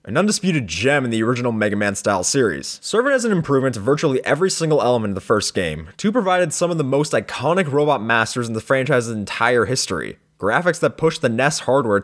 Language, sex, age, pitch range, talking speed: English, male, 20-39, 120-165 Hz, 210 wpm